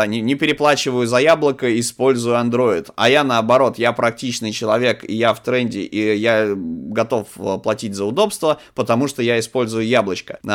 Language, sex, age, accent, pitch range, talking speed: Russian, male, 20-39, native, 110-145 Hz, 150 wpm